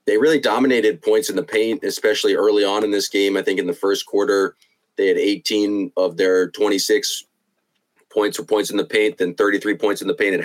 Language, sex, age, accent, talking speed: English, male, 30-49, American, 220 wpm